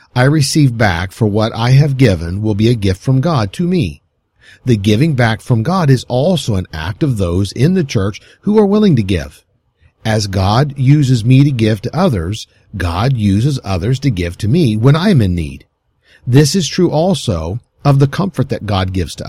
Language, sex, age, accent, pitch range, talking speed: English, male, 50-69, American, 100-140 Hz, 200 wpm